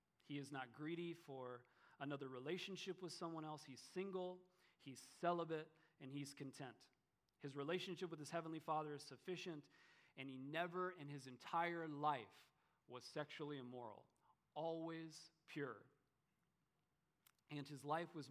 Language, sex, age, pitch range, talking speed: English, male, 40-59, 135-170 Hz, 135 wpm